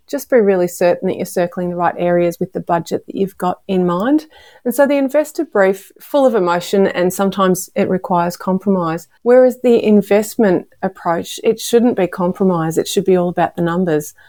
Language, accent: English, Australian